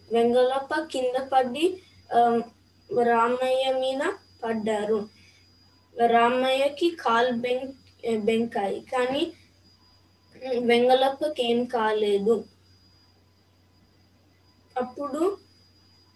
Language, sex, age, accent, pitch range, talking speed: Telugu, female, 20-39, native, 230-275 Hz, 60 wpm